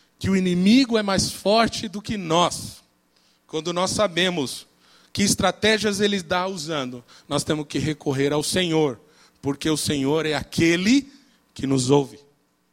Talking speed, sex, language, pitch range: 145 wpm, male, Portuguese, 150-220 Hz